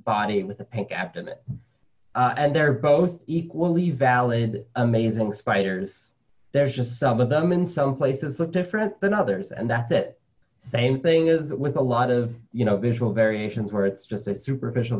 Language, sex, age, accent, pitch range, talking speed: English, male, 20-39, American, 105-130 Hz, 175 wpm